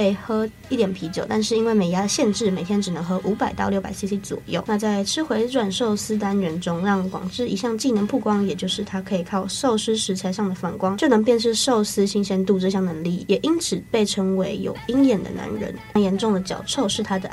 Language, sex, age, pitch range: Chinese, female, 20-39, 195-230 Hz